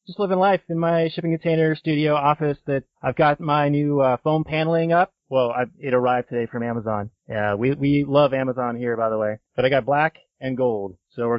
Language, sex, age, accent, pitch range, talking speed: English, male, 30-49, American, 110-130 Hz, 225 wpm